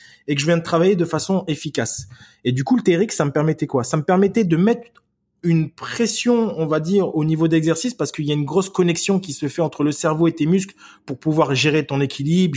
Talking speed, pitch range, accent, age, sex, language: 250 wpm, 150-195 Hz, French, 20-39, male, French